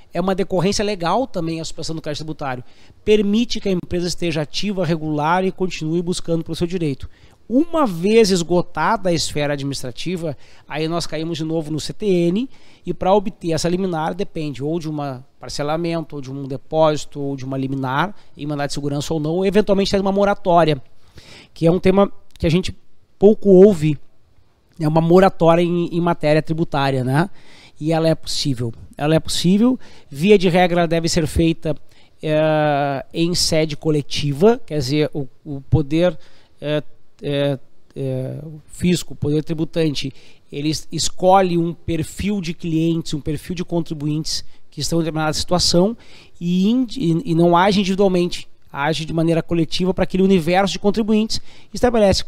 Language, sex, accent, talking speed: Portuguese, male, Brazilian, 155 wpm